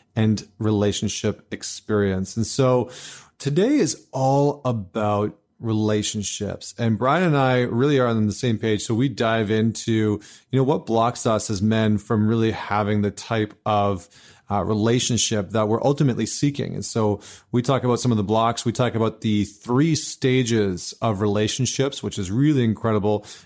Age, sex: 30-49, male